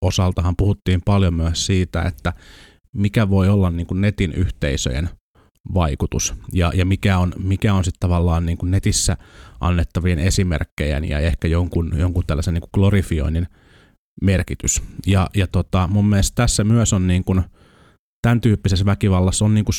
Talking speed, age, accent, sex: 160 wpm, 30-49, native, male